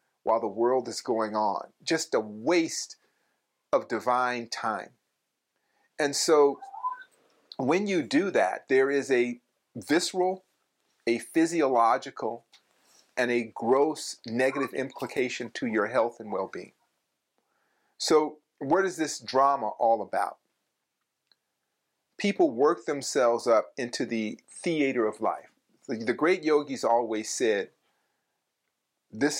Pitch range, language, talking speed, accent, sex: 115-155 Hz, English, 115 wpm, American, male